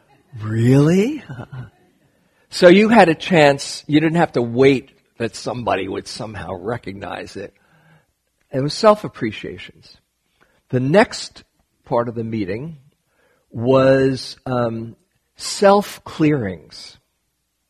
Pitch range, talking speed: 100-130 Hz, 105 wpm